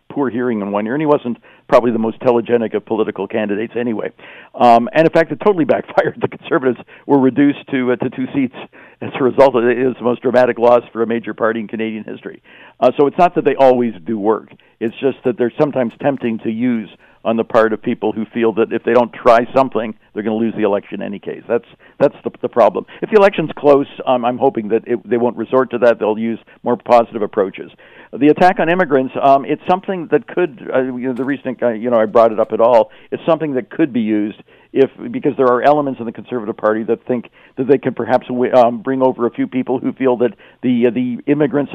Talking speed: 245 wpm